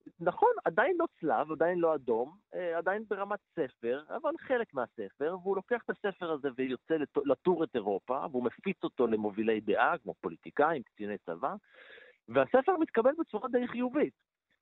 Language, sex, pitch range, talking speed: Hebrew, male, 120-195 Hz, 150 wpm